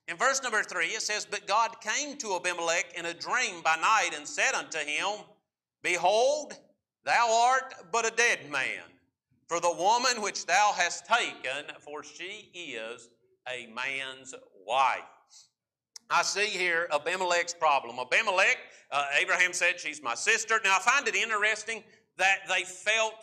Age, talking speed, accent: 50-69, 155 wpm, American